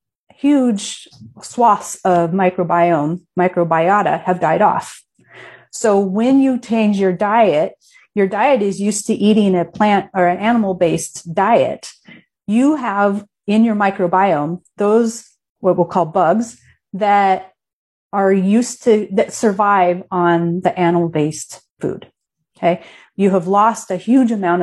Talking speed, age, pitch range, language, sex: 135 wpm, 30-49, 170-210 Hz, English, female